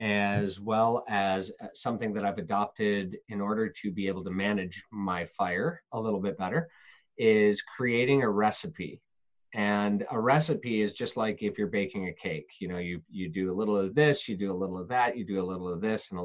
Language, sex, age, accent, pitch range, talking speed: English, male, 30-49, American, 95-120 Hz, 215 wpm